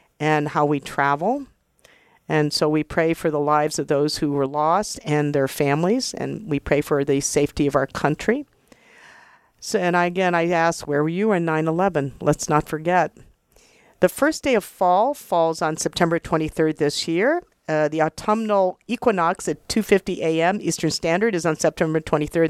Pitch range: 150-185 Hz